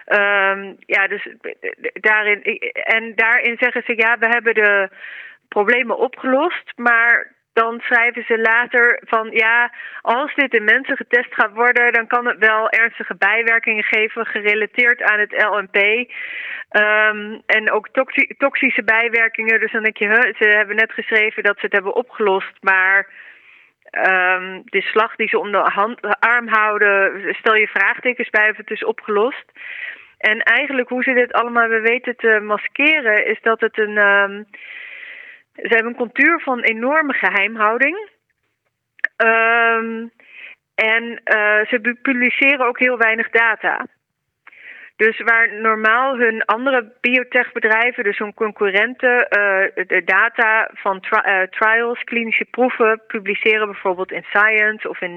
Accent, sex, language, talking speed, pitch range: Dutch, female, Dutch, 140 wpm, 210-245 Hz